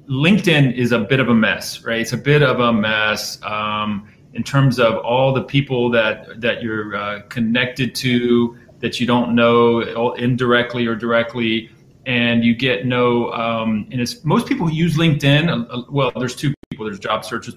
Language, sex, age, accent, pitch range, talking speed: English, male, 30-49, American, 110-130 Hz, 185 wpm